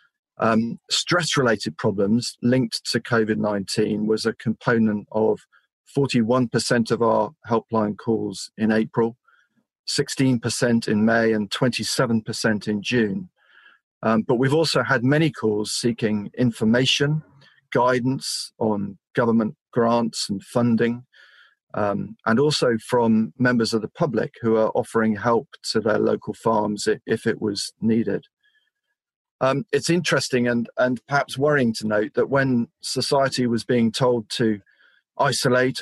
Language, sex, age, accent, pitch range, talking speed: English, male, 40-59, British, 110-125 Hz, 130 wpm